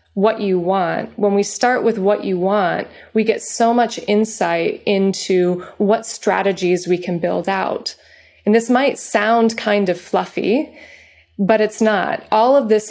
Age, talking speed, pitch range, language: 20-39, 165 wpm, 185-225 Hz, English